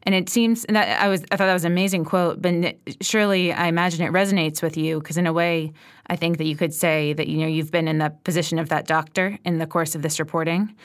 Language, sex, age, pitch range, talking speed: English, female, 20-39, 165-195 Hz, 270 wpm